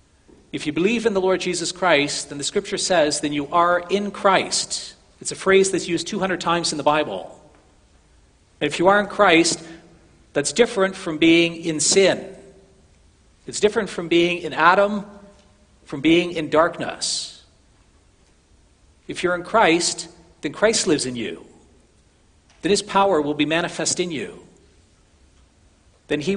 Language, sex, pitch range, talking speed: English, male, 130-180 Hz, 150 wpm